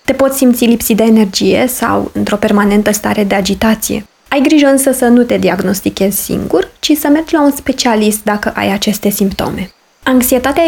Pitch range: 210-270 Hz